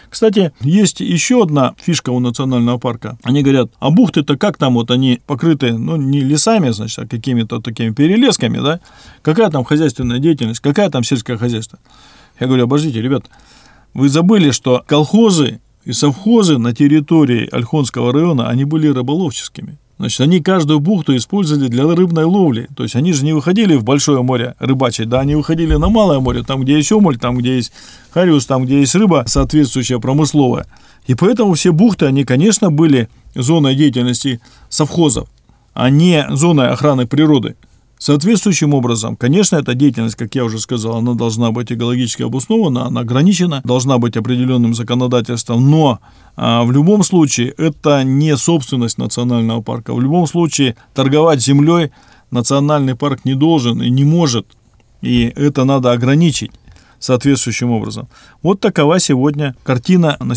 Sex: male